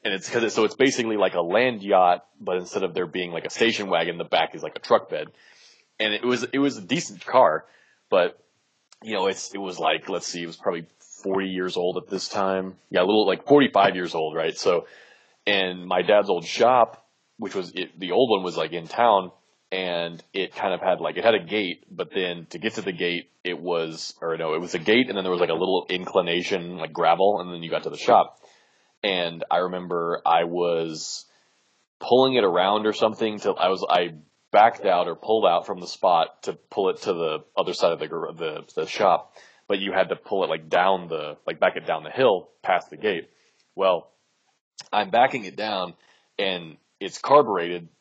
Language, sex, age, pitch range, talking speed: English, male, 20-39, 90-140 Hz, 220 wpm